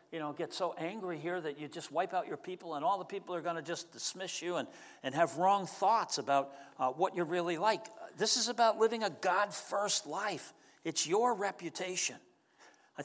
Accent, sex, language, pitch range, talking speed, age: American, male, English, 150-190 Hz, 205 wpm, 60-79